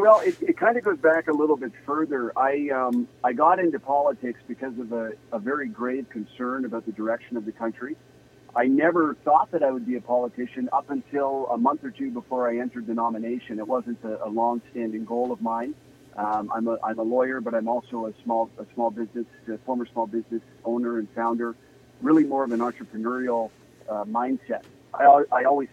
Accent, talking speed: American, 210 wpm